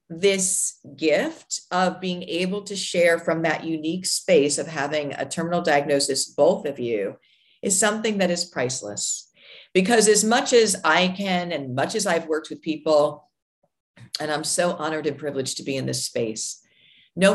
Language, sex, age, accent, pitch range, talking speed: English, female, 50-69, American, 150-195 Hz, 170 wpm